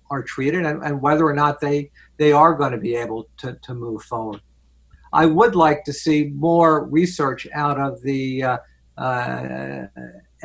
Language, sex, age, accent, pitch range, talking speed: English, male, 60-79, American, 130-155 Hz, 165 wpm